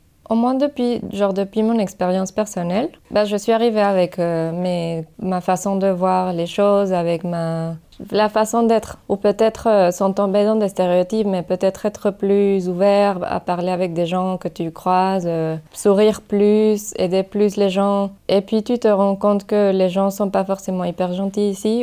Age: 20-39